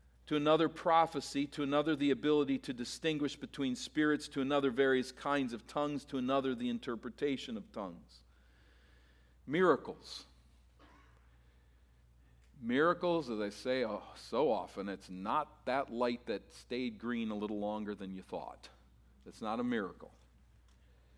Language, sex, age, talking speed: English, male, 50-69, 135 wpm